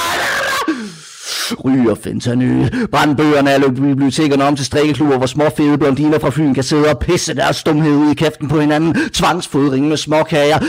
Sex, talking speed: male, 150 wpm